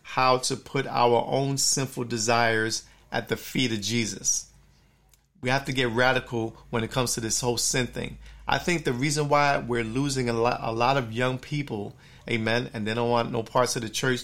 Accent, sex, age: American, male, 40-59